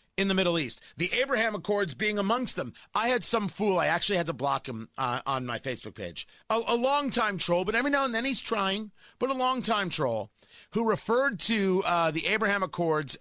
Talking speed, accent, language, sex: 215 wpm, American, English, male